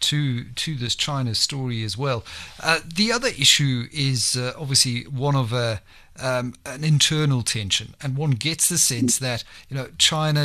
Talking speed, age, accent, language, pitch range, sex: 170 wpm, 50-69, British, English, 120-145 Hz, male